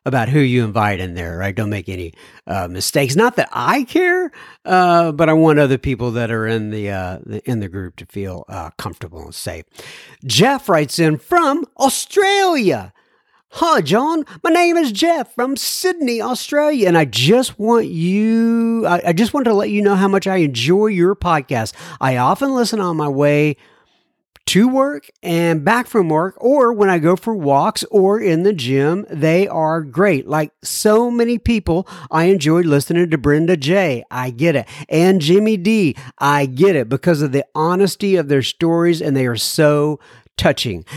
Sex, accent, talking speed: male, American, 185 wpm